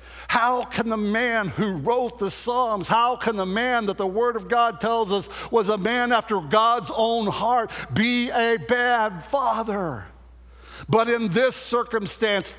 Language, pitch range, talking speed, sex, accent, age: English, 185-235 Hz, 160 wpm, male, American, 60-79